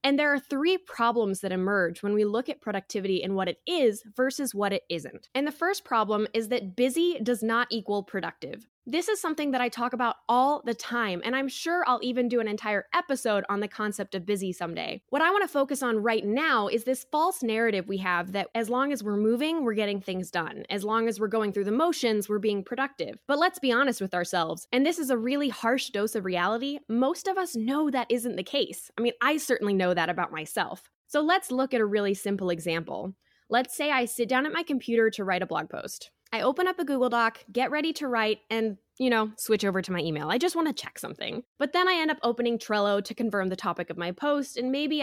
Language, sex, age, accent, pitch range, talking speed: English, female, 10-29, American, 205-275 Hz, 245 wpm